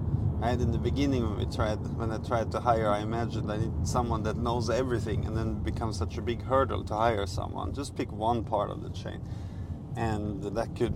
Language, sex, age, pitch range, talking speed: English, male, 30-49, 100-120 Hz, 225 wpm